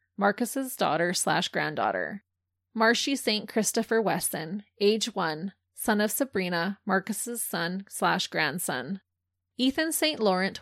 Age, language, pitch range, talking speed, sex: 20-39, English, 175-220 Hz, 115 wpm, female